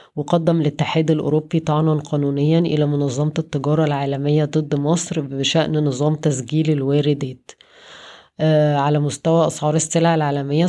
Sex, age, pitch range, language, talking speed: female, 20-39, 140-155 Hz, Arabic, 120 wpm